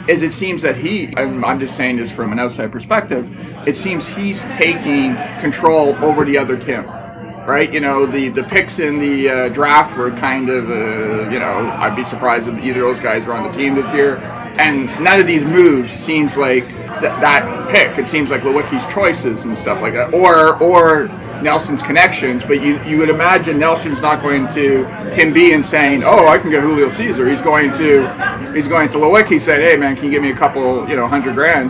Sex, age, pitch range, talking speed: male, 40-59, 130-165 Hz, 210 wpm